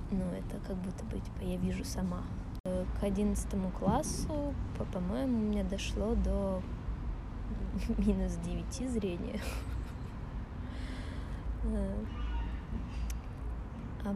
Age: 20-39